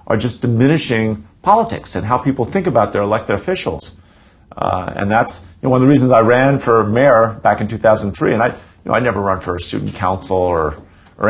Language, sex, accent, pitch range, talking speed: English, male, American, 95-130 Hz, 220 wpm